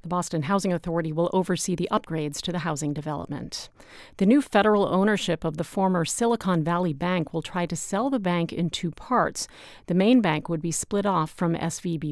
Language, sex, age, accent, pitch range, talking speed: English, female, 40-59, American, 165-200 Hz, 200 wpm